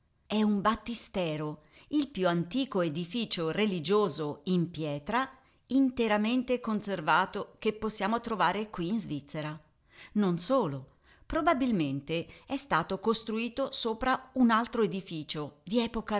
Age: 40-59